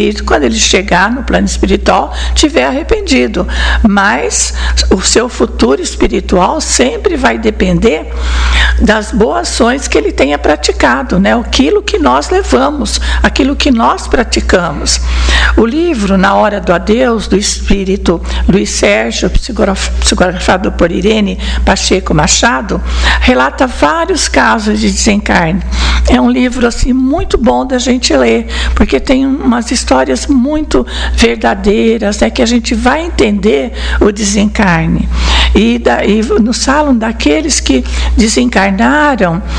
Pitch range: 195-250 Hz